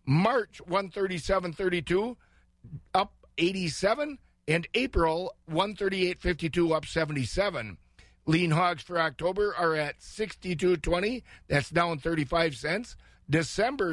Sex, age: male, 50-69